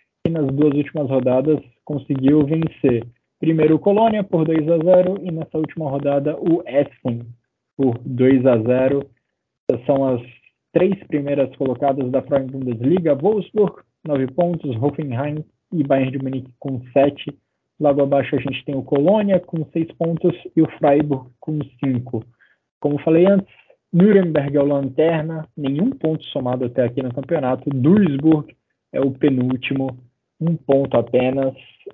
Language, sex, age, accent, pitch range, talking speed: Portuguese, male, 20-39, Brazilian, 125-150 Hz, 145 wpm